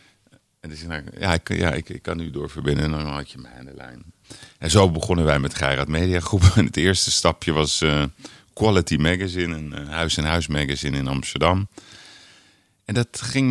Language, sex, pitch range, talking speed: Dutch, male, 75-100 Hz, 185 wpm